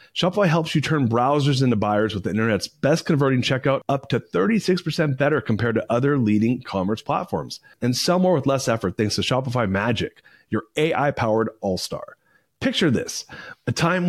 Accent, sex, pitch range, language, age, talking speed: American, male, 105-150 Hz, English, 30-49, 175 wpm